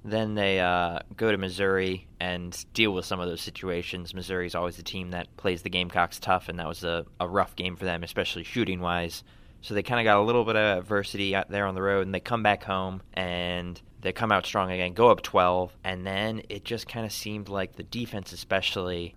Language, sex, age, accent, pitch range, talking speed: English, male, 20-39, American, 90-105 Hz, 230 wpm